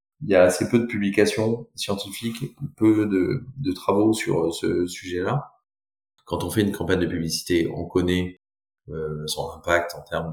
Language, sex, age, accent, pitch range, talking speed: French, male, 30-49, French, 80-100 Hz, 170 wpm